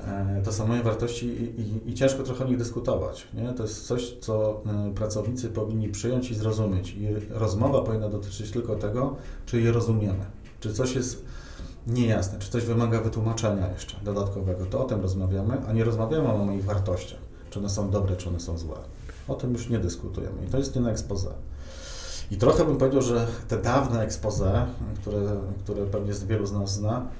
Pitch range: 100-115 Hz